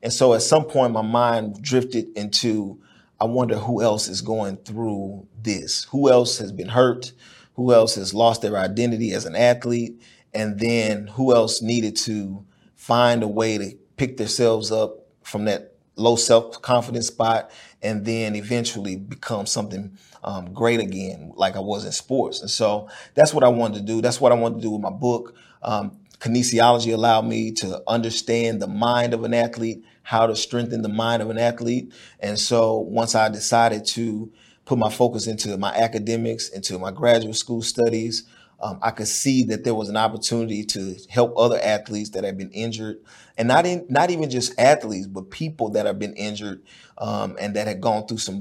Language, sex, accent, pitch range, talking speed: English, male, American, 105-120 Hz, 185 wpm